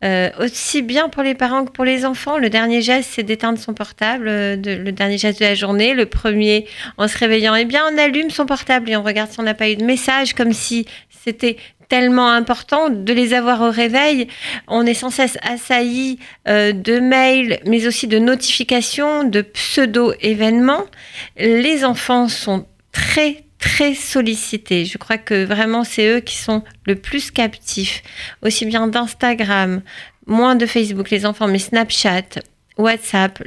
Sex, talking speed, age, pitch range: female, 175 wpm, 40-59, 210-255 Hz